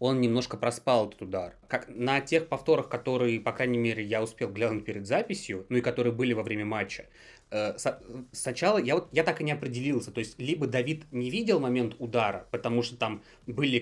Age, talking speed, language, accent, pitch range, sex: 20-39, 195 wpm, Russian, native, 110-130 Hz, male